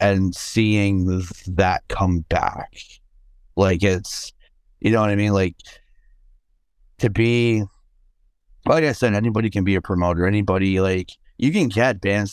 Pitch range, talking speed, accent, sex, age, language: 85-105 Hz, 140 wpm, American, male, 30-49, English